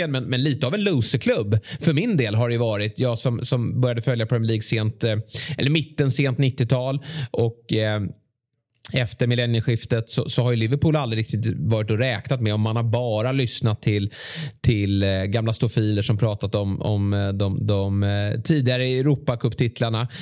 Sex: male